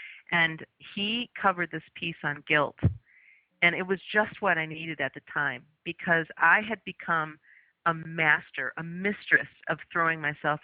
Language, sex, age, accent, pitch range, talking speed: English, female, 40-59, American, 155-180 Hz, 160 wpm